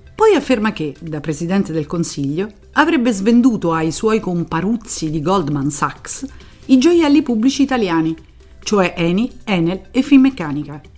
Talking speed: 130 wpm